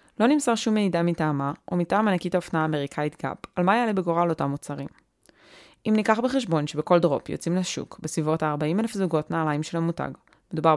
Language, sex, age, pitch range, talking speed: Hebrew, female, 20-39, 150-185 Hz, 180 wpm